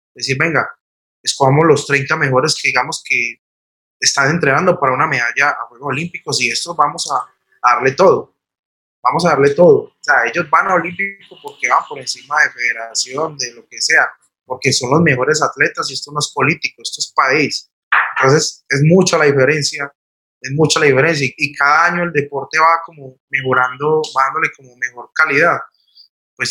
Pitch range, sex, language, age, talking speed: 125-150 Hz, male, Spanish, 20-39, 180 wpm